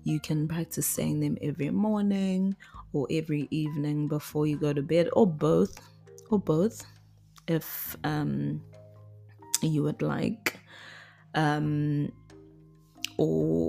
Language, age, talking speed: English, 20-39, 115 wpm